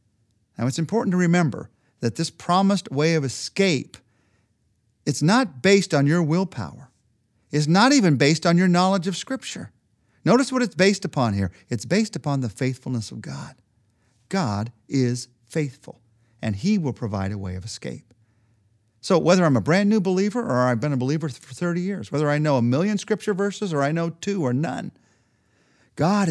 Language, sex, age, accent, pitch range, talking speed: English, male, 50-69, American, 115-175 Hz, 180 wpm